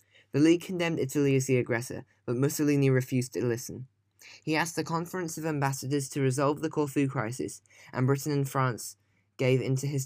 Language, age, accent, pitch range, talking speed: English, 10-29, British, 115-145 Hz, 185 wpm